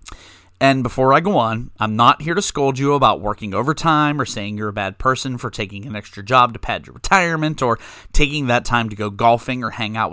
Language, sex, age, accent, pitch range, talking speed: English, male, 30-49, American, 105-145 Hz, 230 wpm